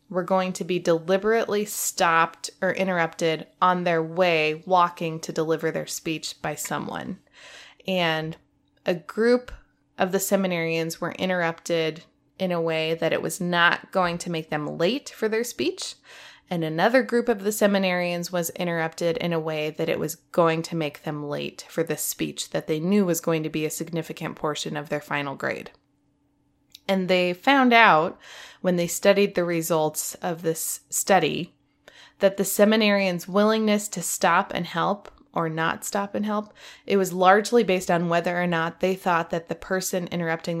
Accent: American